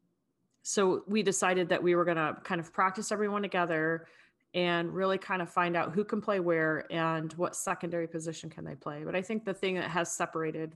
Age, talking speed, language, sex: 30-49, 210 wpm, English, female